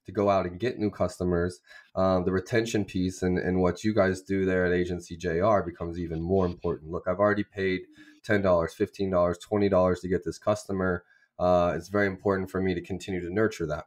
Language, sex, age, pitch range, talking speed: English, male, 20-39, 90-100 Hz, 215 wpm